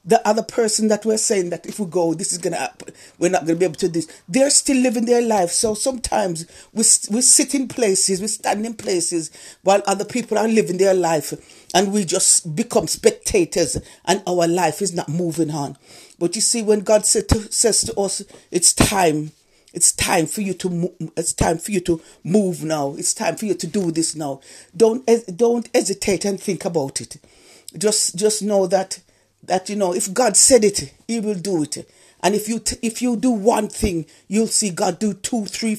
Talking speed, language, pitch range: 215 wpm, English, 175-215 Hz